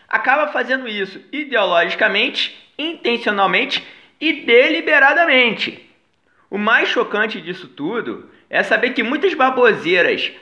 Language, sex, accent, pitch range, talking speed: Portuguese, male, Brazilian, 220-285 Hz, 100 wpm